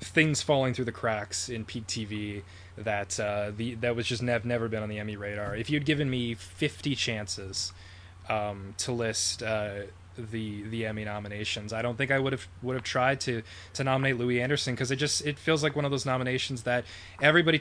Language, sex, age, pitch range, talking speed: English, male, 20-39, 105-130 Hz, 210 wpm